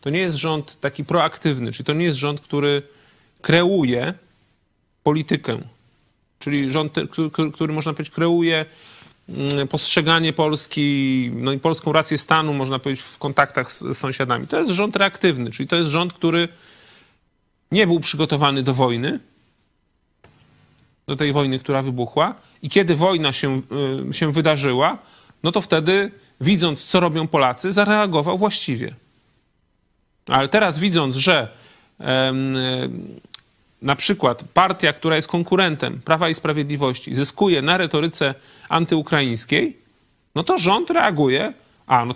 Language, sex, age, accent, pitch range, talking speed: Polish, male, 30-49, native, 135-170 Hz, 130 wpm